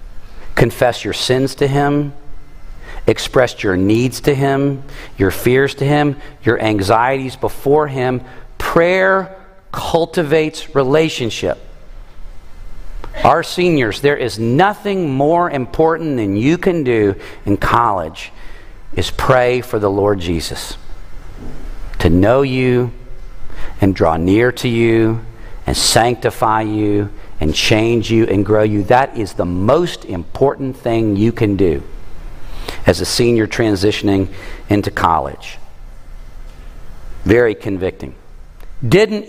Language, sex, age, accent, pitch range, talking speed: English, male, 50-69, American, 100-155 Hz, 115 wpm